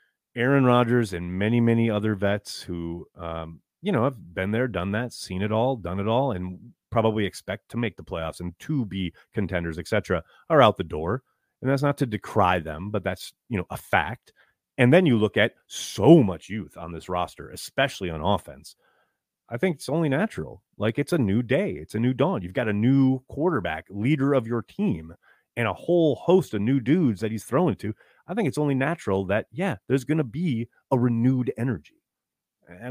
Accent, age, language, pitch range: American, 30-49, English, 95-135 Hz